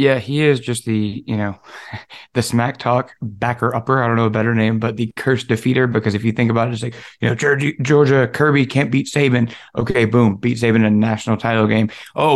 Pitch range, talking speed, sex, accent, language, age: 115-140 Hz, 235 wpm, male, American, English, 20-39